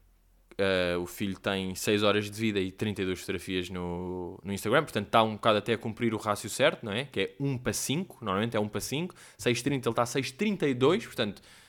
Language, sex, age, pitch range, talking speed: Portuguese, male, 20-39, 100-140 Hz, 215 wpm